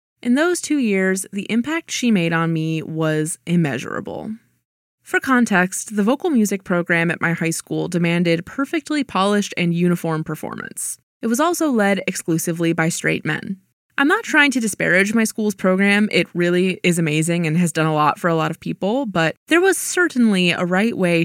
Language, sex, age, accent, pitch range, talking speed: English, female, 20-39, American, 165-225 Hz, 185 wpm